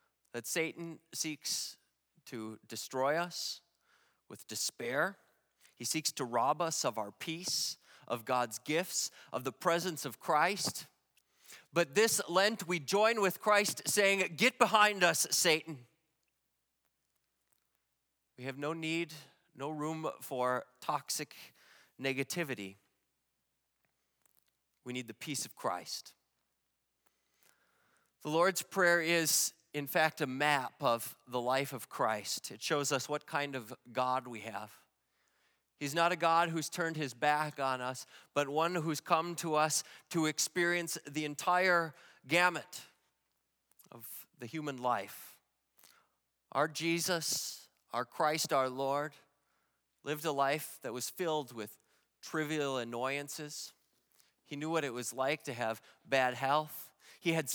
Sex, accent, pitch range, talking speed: male, American, 130-170 Hz, 130 wpm